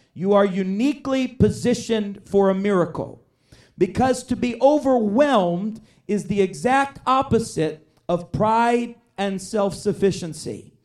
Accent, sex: American, male